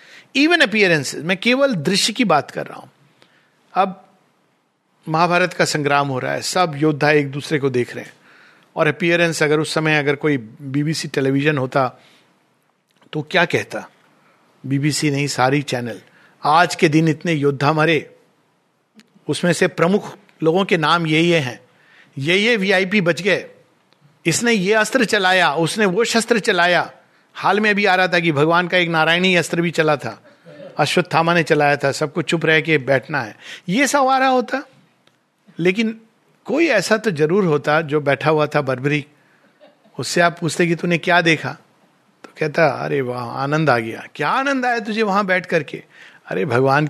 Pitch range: 150-200 Hz